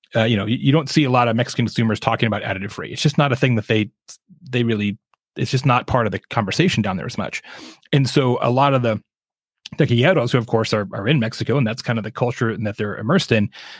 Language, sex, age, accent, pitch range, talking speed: English, male, 30-49, American, 115-150 Hz, 265 wpm